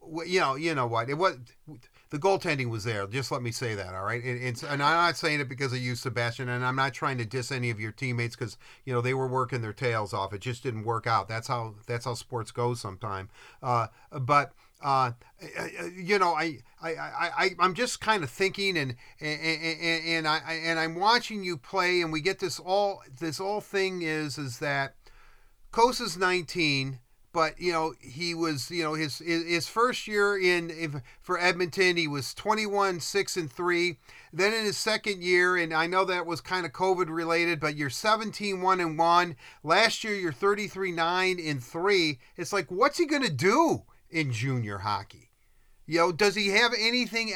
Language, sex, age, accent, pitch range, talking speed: English, male, 40-59, American, 130-190 Hz, 205 wpm